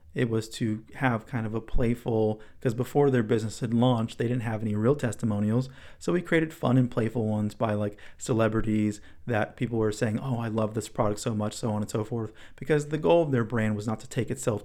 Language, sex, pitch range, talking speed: English, male, 105-120 Hz, 235 wpm